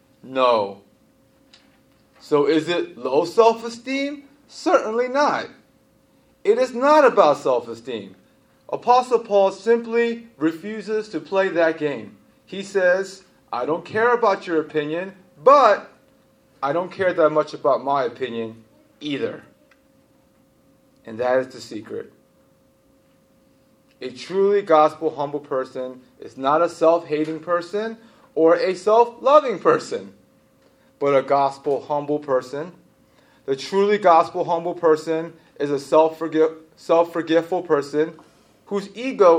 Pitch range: 155-235 Hz